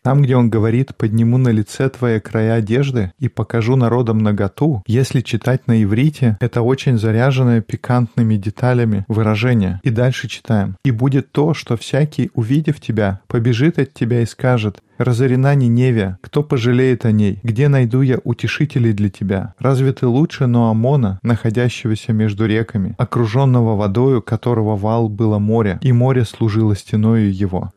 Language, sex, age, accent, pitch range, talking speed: Russian, male, 20-39, native, 110-130 Hz, 150 wpm